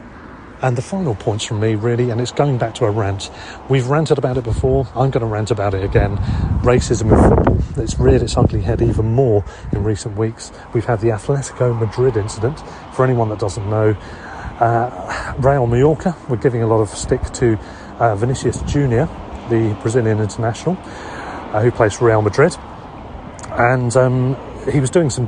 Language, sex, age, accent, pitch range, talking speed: English, male, 40-59, British, 110-135 Hz, 185 wpm